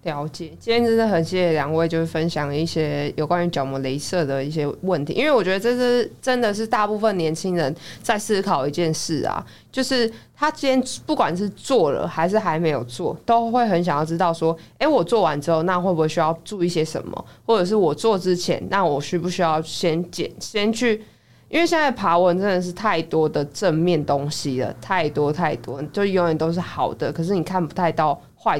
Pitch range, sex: 155-200 Hz, female